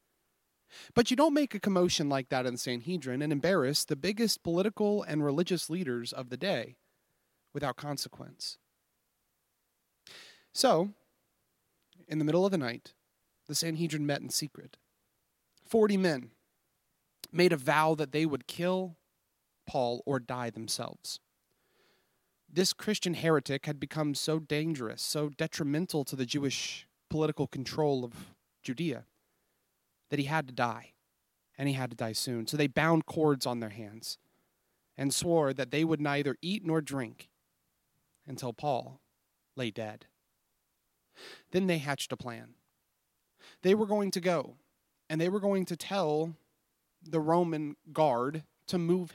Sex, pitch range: male, 135-175 Hz